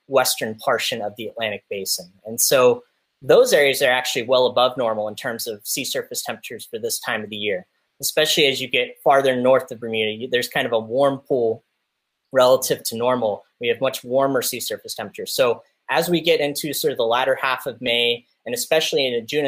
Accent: American